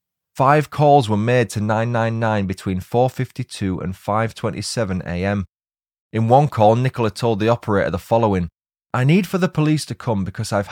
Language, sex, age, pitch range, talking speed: English, male, 20-39, 100-130 Hz, 160 wpm